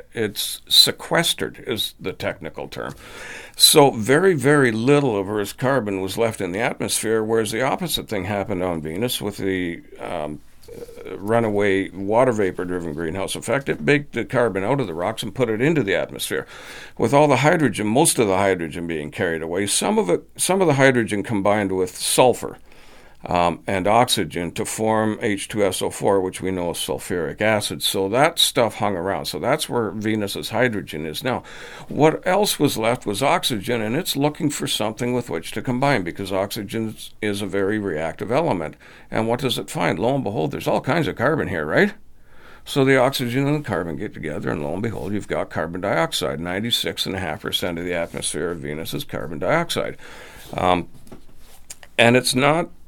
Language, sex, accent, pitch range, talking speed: English, male, American, 95-125 Hz, 175 wpm